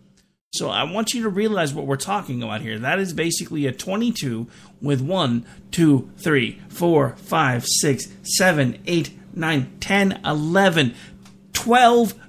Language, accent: English, American